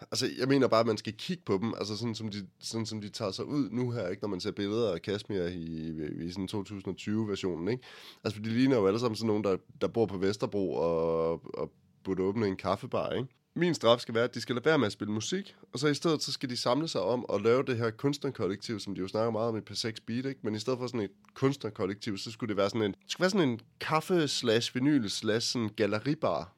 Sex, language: male, Danish